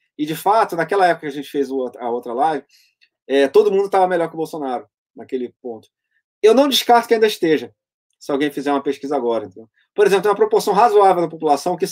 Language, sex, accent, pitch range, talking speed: Portuguese, male, Brazilian, 135-180 Hz, 220 wpm